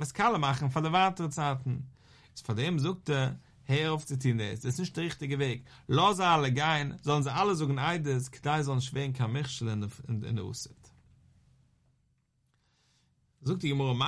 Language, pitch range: English, 125-150 Hz